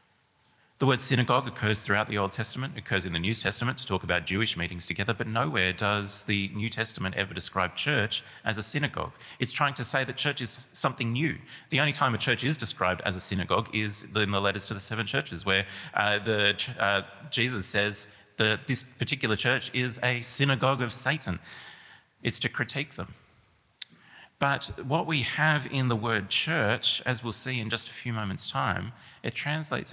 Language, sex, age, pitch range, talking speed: English, male, 30-49, 100-125 Hz, 190 wpm